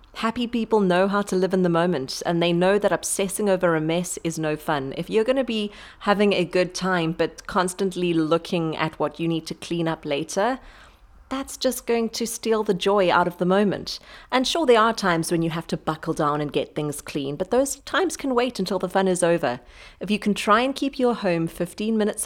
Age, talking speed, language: 30-49, 230 wpm, English